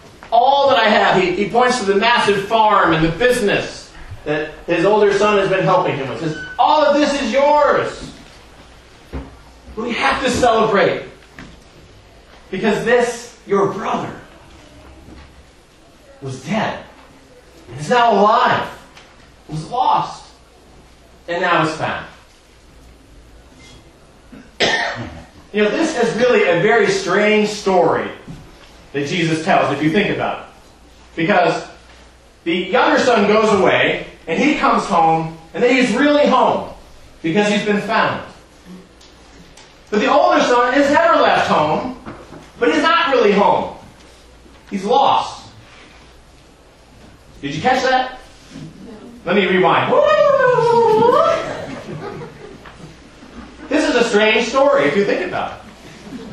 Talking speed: 125 wpm